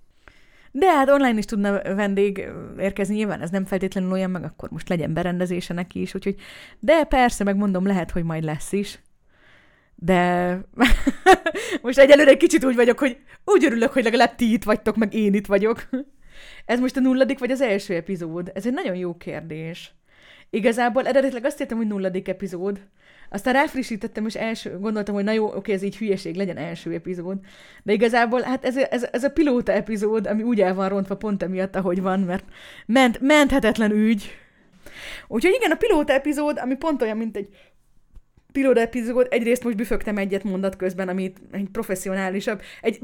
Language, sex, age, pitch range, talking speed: Hungarian, female, 30-49, 190-260 Hz, 175 wpm